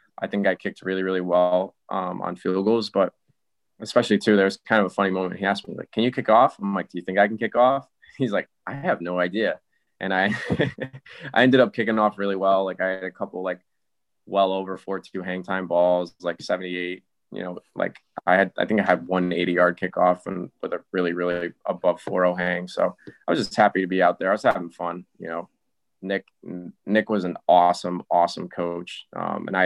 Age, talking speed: 20-39, 230 wpm